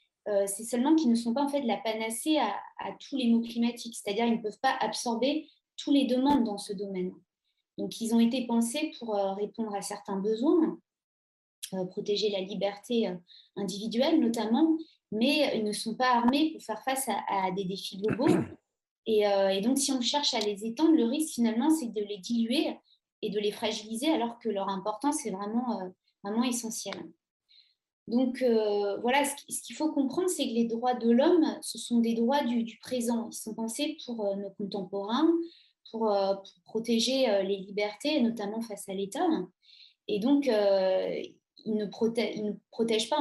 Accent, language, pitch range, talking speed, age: French, French, 210-270 Hz, 190 wpm, 20-39